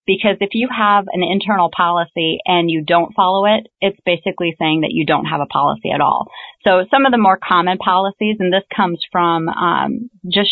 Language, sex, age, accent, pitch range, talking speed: English, female, 30-49, American, 160-185 Hz, 205 wpm